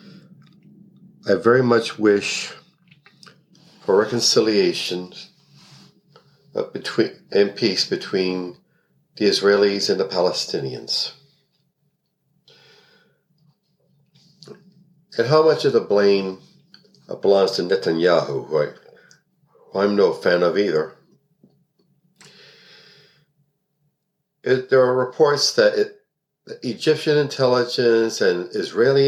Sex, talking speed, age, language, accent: male, 80 wpm, 50-69, English, American